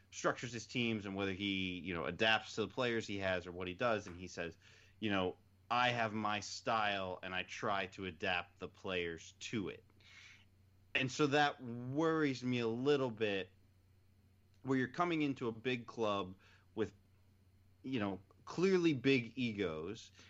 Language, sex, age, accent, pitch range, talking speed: English, male, 30-49, American, 95-115 Hz, 170 wpm